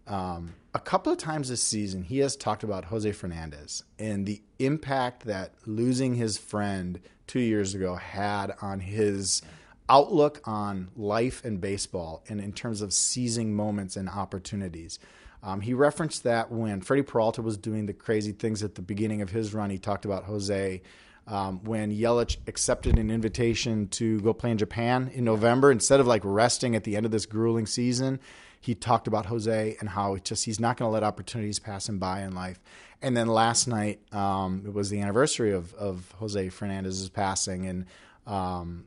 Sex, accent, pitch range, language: male, American, 100-120 Hz, English